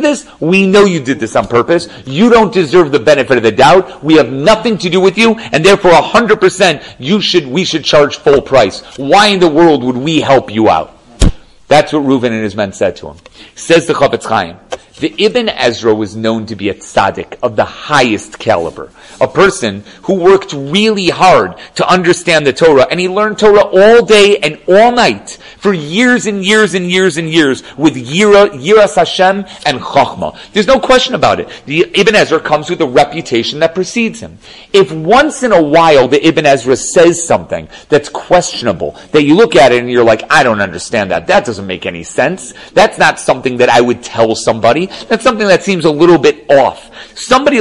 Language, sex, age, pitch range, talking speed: English, male, 40-59, 150-220 Hz, 205 wpm